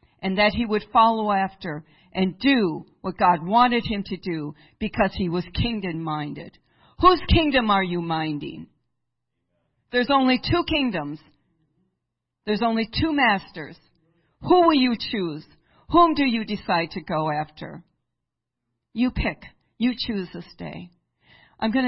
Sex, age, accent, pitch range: female, 50-69, American, 170-255 Hz